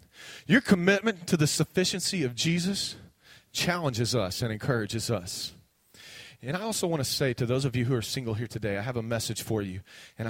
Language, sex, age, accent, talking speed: English, male, 30-49, American, 200 wpm